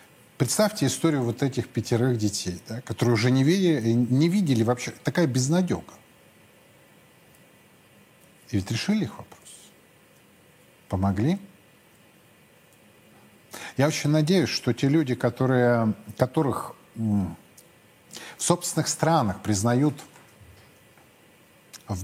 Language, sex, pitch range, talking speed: Russian, male, 115-155 Hz, 100 wpm